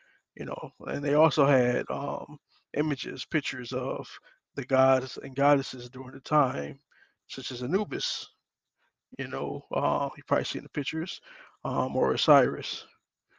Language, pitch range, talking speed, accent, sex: English, 130-165 Hz, 140 wpm, American, male